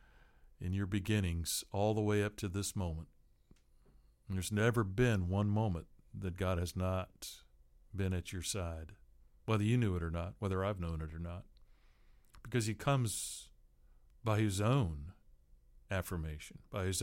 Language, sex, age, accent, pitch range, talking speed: English, male, 50-69, American, 85-110 Hz, 160 wpm